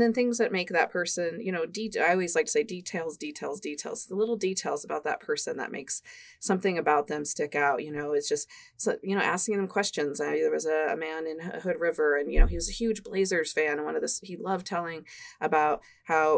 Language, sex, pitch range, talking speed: English, female, 160-235 Hz, 255 wpm